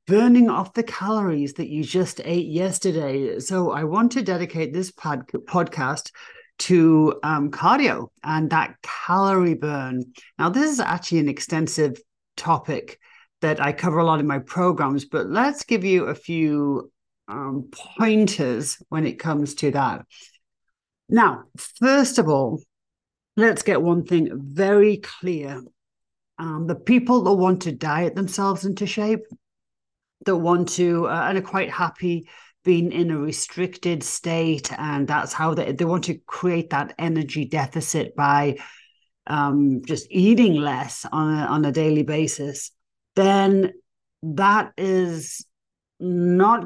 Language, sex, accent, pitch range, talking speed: English, male, British, 150-190 Hz, 140 wpm